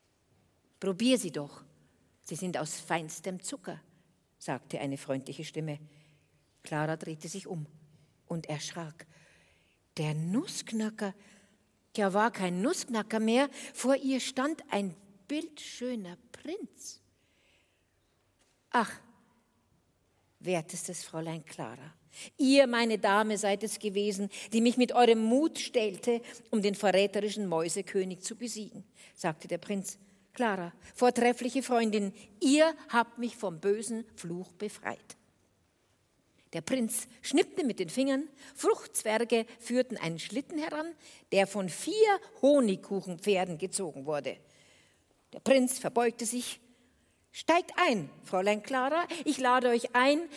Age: 50-69